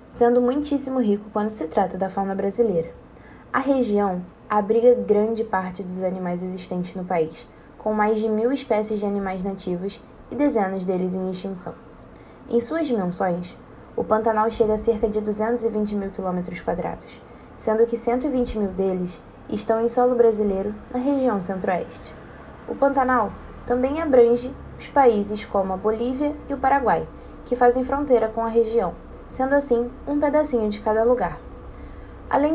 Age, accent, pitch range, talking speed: 10-29, Brazilian, 195-245 Hz, 150 wpm